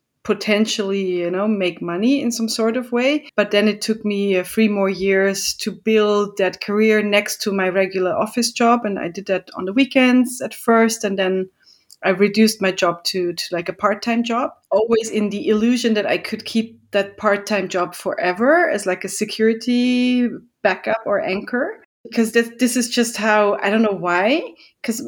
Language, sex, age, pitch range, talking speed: English, female, 30-49, 195-230 Hz, 190 wpm